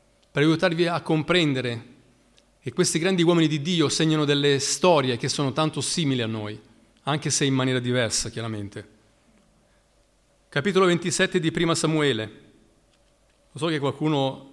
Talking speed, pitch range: 140 wpm, 130-160 Hz